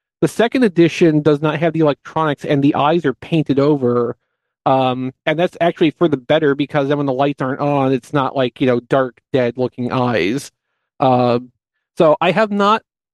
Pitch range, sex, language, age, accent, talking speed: 135-170 Hz, male, English, 40-59, American, 185 wpm